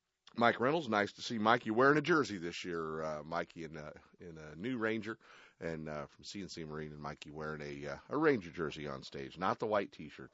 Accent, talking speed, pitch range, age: American, 220 wpm, 75-100 Hz, 40-59